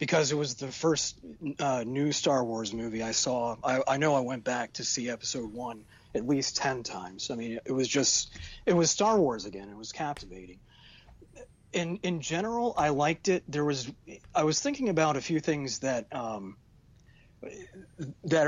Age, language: 30-49, English